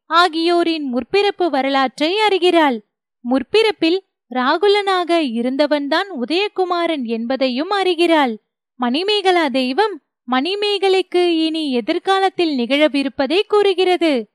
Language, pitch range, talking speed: Tamil, 270-375 Hz, 65 wpm